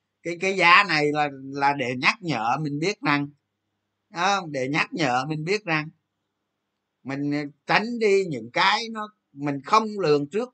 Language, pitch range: Vietnamese, 120-185 Hz